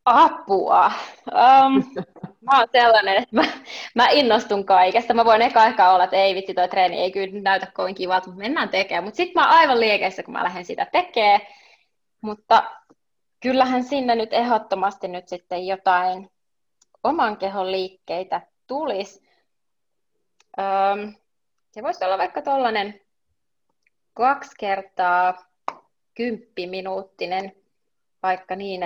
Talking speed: 130 wpm